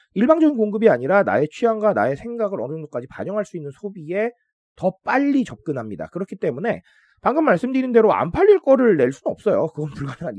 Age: 30-49